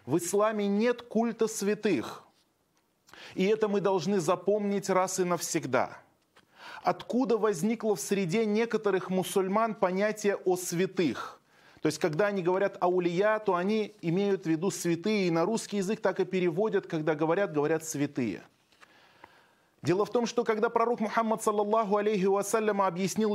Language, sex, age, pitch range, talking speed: Russian, male, 20-39, 190-225 Hz, 145 wpm